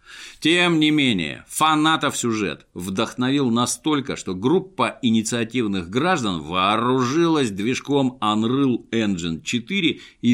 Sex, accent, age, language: male, native, 50-69, Russian